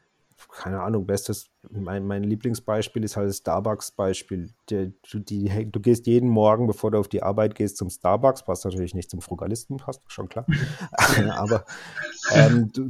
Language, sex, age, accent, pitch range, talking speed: German, male, 30-49, German, 100-125 Hz, 165 wpm